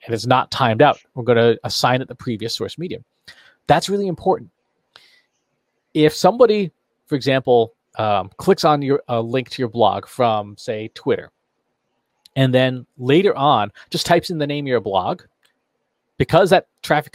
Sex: male